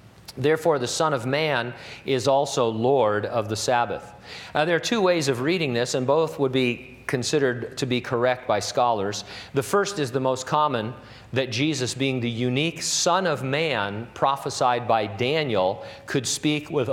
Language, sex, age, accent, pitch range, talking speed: English, male, 50-69, American, 115-145 Hz, 170 wpm